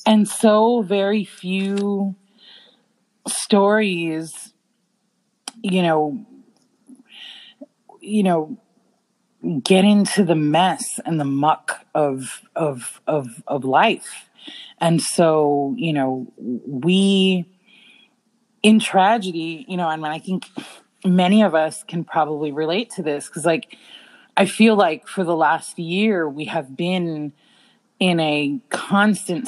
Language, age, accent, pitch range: English, 30-49, American, 170-220 Hz